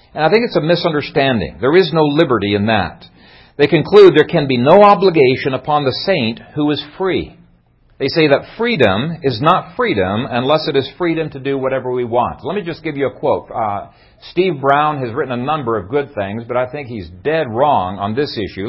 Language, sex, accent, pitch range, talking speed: English, male, American, 125-175 Hz, 215 wpm